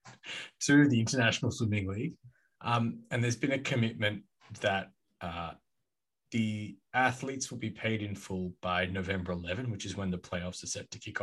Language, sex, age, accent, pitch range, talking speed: English, male, 20-39, Australian, 95-115 Hz, 170 wpm